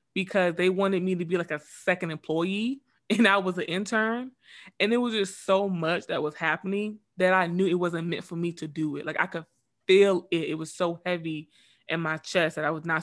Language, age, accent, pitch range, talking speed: English, 20-39, American, 165-190 Hz, 235 wpm